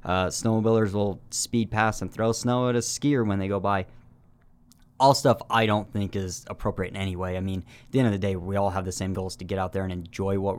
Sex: male